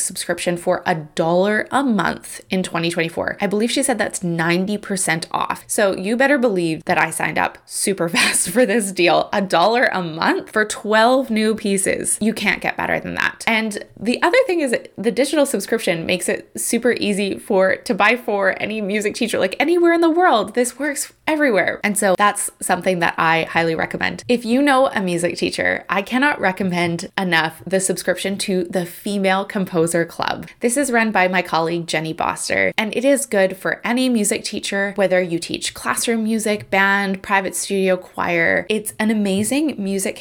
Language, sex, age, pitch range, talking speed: English, female, 20-39, 185-245 Hz, 185 wpm